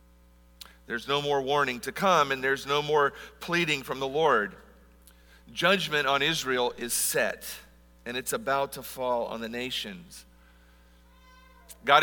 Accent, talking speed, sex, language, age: American, 140 wpm, male, English, 50-69